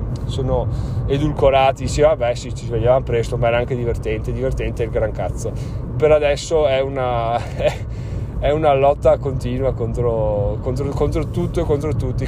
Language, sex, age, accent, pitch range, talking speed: Italian, male, 30-49, native, 120-140 Hz, 155 wpm